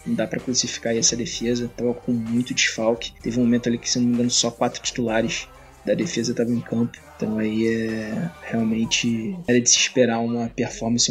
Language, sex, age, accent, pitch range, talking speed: Portuguese, male, 20-39, Brazilian, 115-130 Hz, 200 wpm